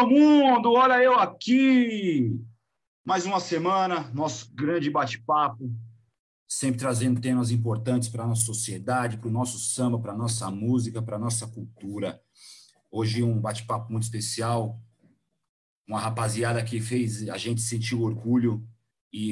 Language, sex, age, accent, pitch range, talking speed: Portuguese, male, 40-59, Brazilian, 110-135 Hz, 130 wpm